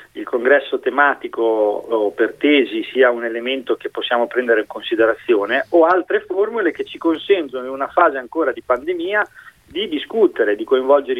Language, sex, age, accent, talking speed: Italian, male, 40-59, native, 155 wpm